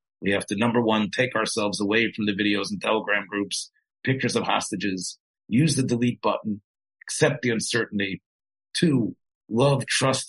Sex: male